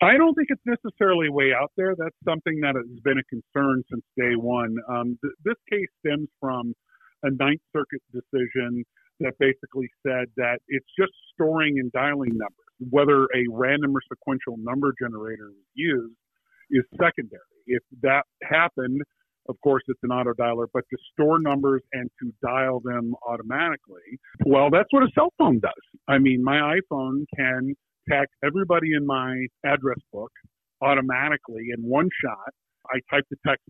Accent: American